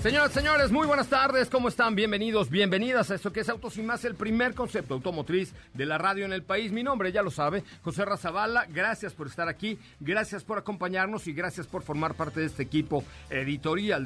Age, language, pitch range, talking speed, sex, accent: 50-69, Spanish, 160-215 Hz, 210 wpm, male, Mexican